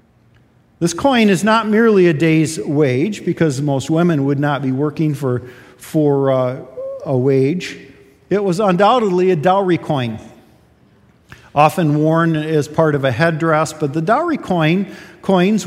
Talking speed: 145 wpm